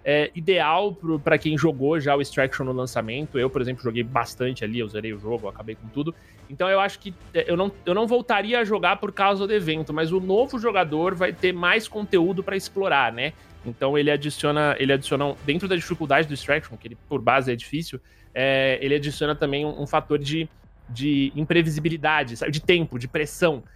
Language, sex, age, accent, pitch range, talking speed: Portuguese, male, 20-39, Brazilian, 125-175 Hz, 200 wpm